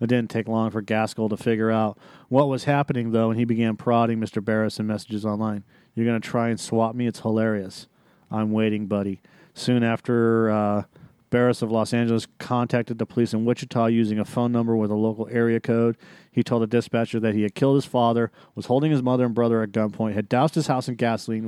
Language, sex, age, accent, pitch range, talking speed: English, male, 40-59, American, 110-125 Hz, 220 wpm